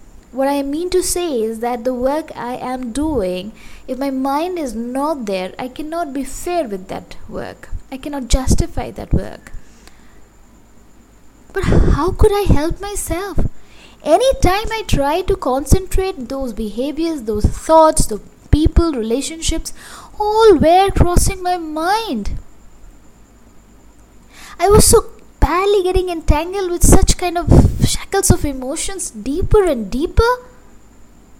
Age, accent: 20-39, Indian